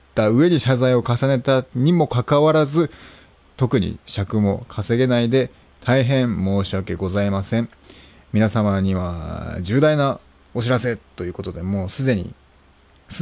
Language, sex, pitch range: Japanese, male, 90-125 Hz